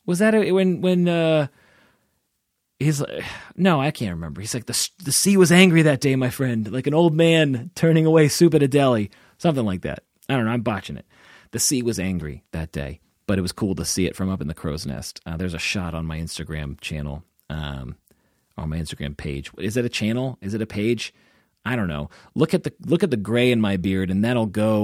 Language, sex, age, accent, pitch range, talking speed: English, male, 30-49, American, 90-135 Hz, 240 wpm